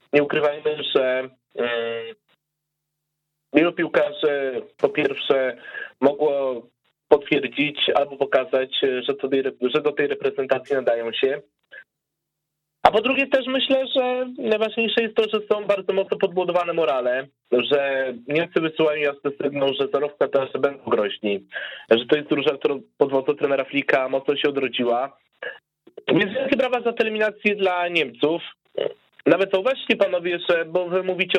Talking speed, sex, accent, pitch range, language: 135 wpm, male, native, 130-180 Hz, Polish